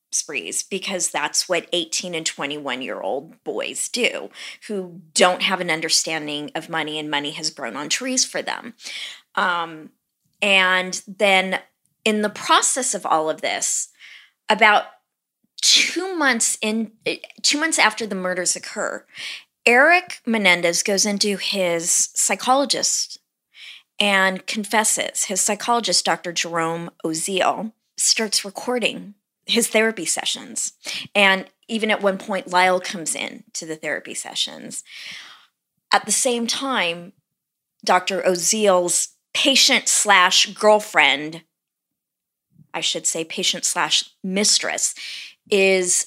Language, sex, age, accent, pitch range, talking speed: English, female, 20-39, American, 175-220 Hz, 120 wpm